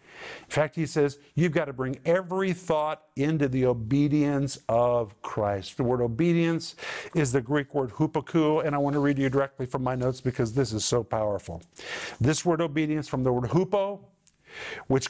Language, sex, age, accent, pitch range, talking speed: English, male, 50-69, American, 135-180 Hz, 185 wpm